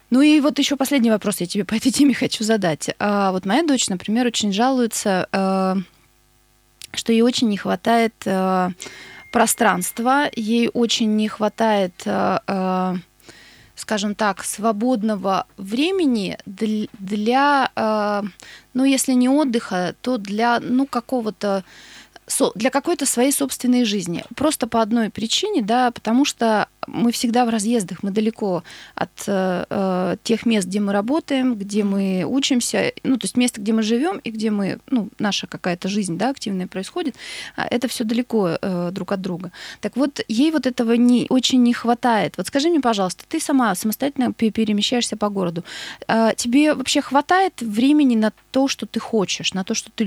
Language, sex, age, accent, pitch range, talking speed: Russian, female, 20-39, native, 200-255 Hz, 150 wpm